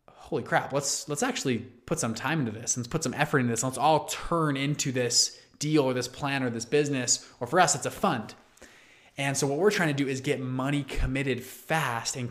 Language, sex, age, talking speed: English, male, 20-39, 235 wpm